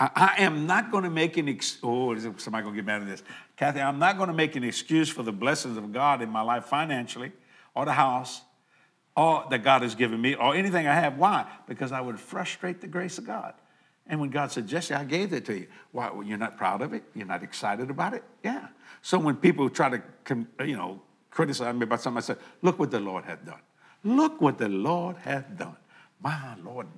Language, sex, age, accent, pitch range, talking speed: English, male, 60-79, American, 125-180 Hz, 230 wpm